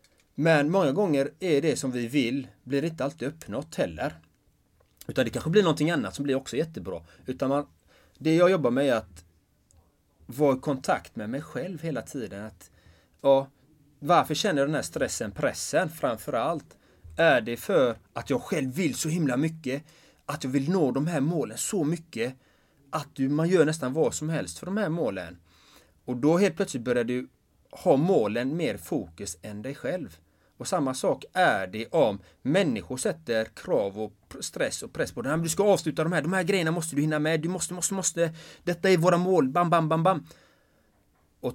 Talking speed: 200 wpm